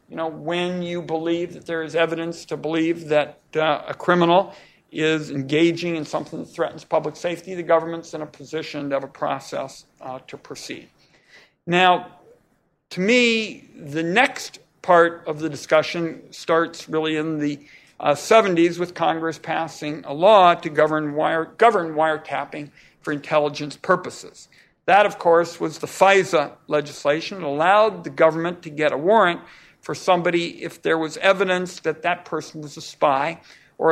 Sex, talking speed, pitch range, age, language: male, 160 wpm, 155-175 Hz, 60-79, English